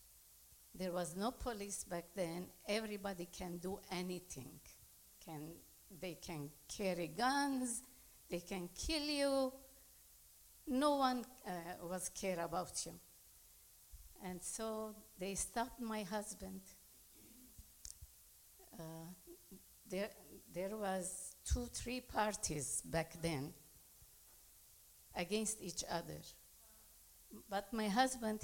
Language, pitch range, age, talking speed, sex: English, 175-235 Hz, 60-79, 100 wpm, female